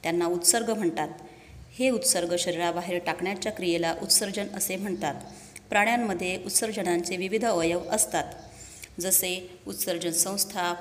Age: 30-49